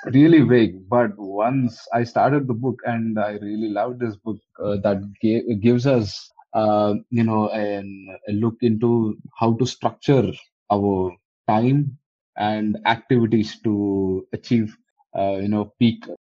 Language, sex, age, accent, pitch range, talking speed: English, male, 20-39, Indian, 100-115 Hz, 145 wpm